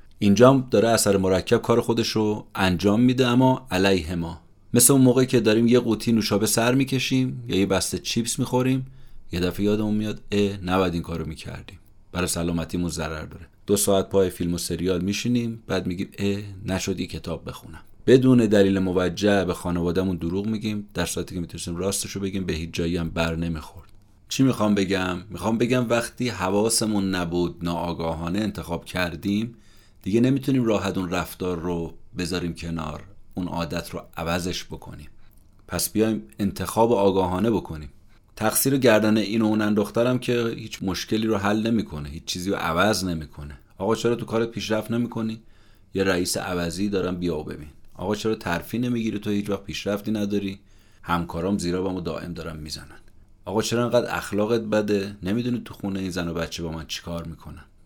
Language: Persian